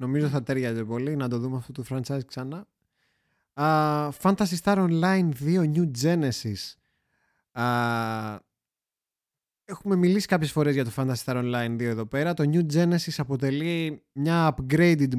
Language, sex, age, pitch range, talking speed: Greek, male, 20-39, 125-175 Hz, 145 wpm